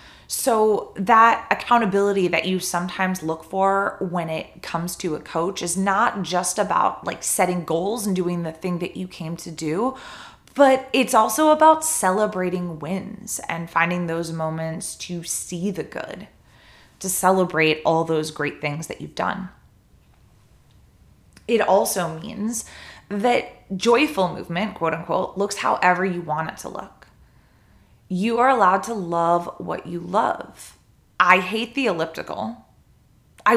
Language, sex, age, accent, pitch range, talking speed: English, female, 20-39, American, 160-210 Hz, 145 wpm